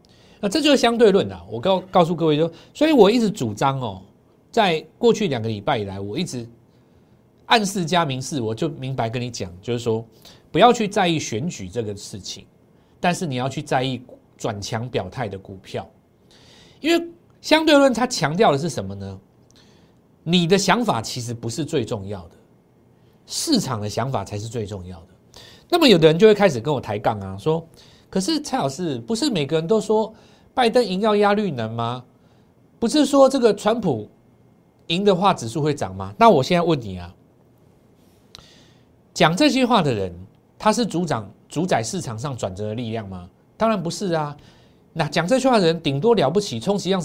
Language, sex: Chinese, male